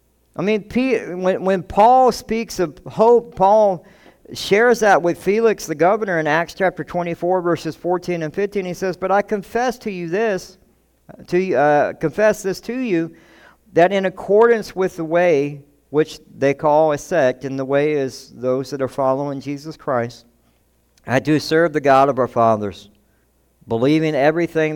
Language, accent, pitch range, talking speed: English, American, 120-170 Hz, 165 wpm